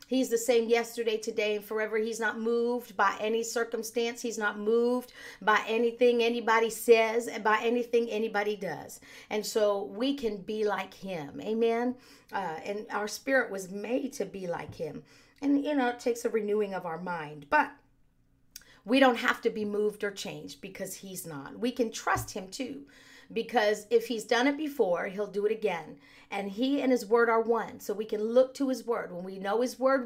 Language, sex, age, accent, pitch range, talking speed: English, female, 50-69, American, 205-245 Hz, 195 wpm